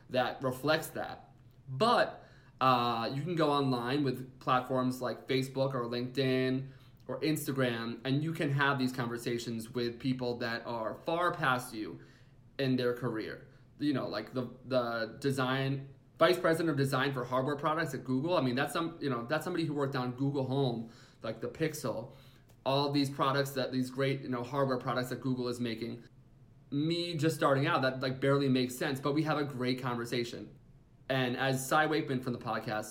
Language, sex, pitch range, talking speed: English, male, 125-140 Hz, 180 wpm